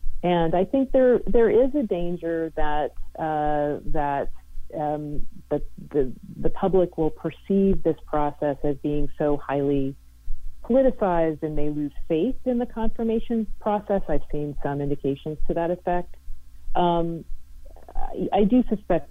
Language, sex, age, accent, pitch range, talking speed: English, female, 40-59, American, 125-160 Hz, 140 wpm